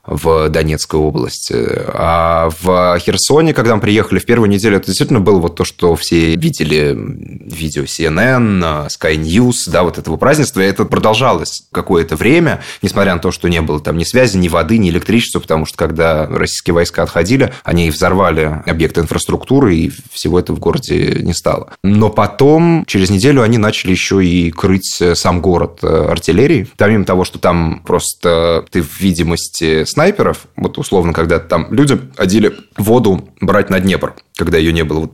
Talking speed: 170 wpm